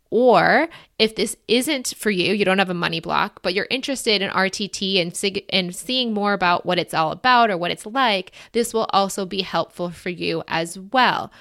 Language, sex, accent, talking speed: English, female, American, 205 wpm